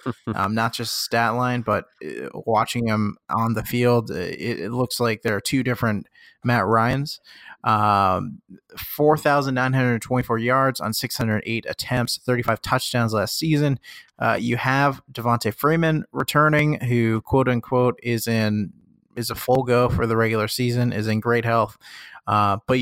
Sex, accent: male, American